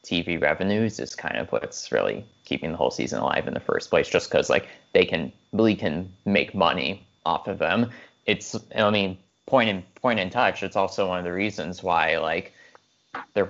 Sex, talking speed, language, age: male, 200 wpm, English, 20-39